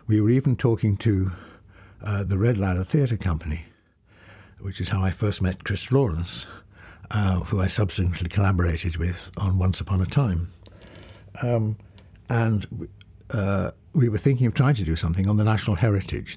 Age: 60-79